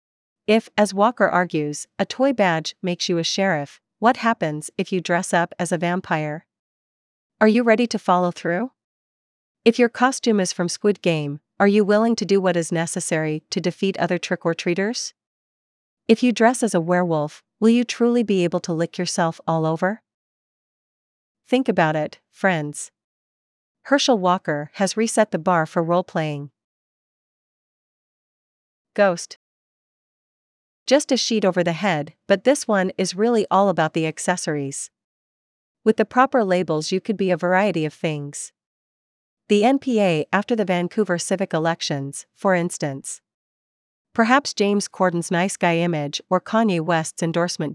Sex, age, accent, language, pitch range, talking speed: female, 40-59, American, English, 165-215 Hz, 150 wpm